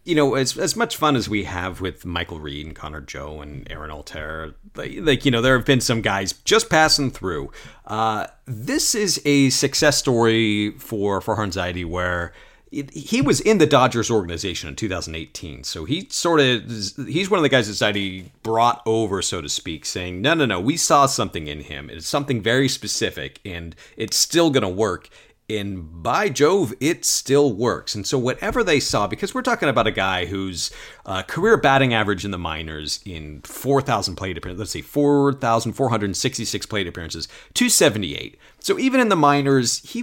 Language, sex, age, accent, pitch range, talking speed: English, male, 40-59, American, 95-140 Hz, 185 wpm